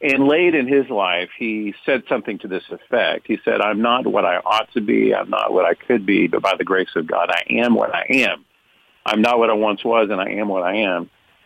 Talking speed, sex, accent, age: 255 wpm, male, American, 50-69